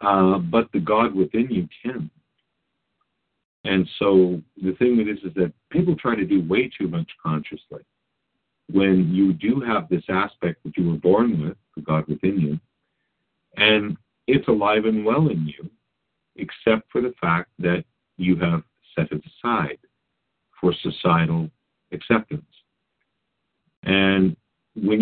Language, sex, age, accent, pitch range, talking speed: English, male, 50-69, American, 85-105 Hz, 140 wpm